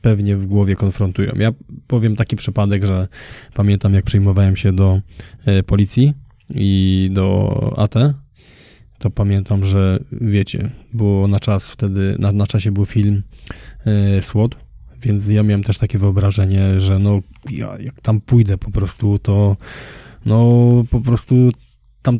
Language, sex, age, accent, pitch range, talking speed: Polish, male, 20-39, native, 100-125 Hz, 145 wpm